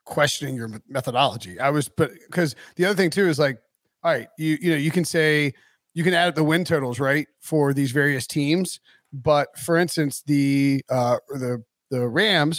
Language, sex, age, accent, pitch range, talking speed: English, male, 30-49, American, 145-175 Hz, 195 wpm